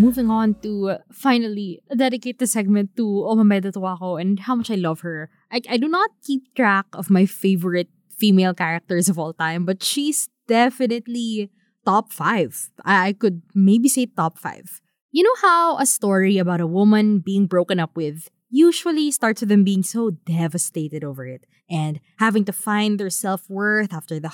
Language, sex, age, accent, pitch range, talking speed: English, female, 20-39, Filipino, 180-230 Hz, 175 wpm